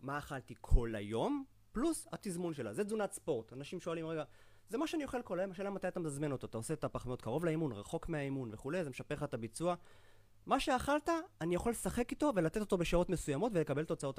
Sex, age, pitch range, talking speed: male, 30-49, 130-180 Hz, 210 wpm